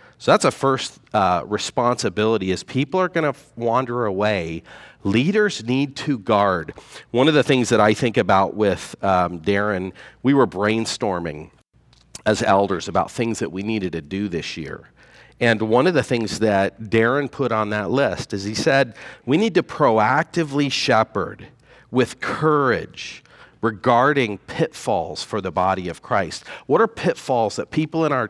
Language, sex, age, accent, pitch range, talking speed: English, male, 40-59, American, 110-145 Hz, 165 wpm